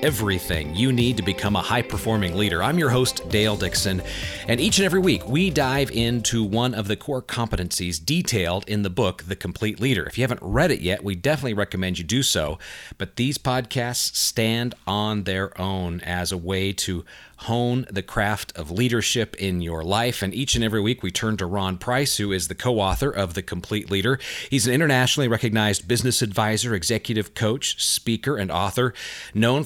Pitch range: 95-120 Hz